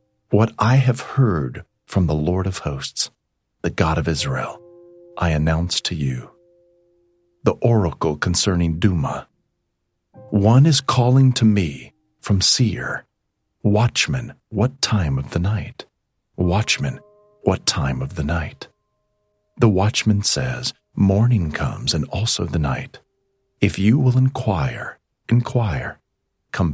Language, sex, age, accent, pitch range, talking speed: English, male, 40-59, American, 90-125 Hz, 125 wpm